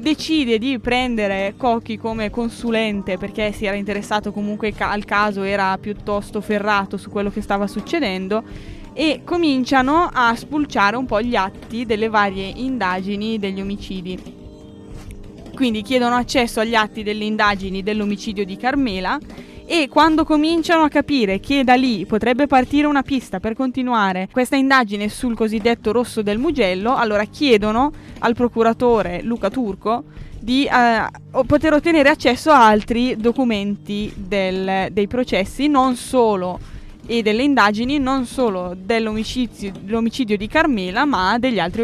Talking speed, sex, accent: 140 wpm, female, native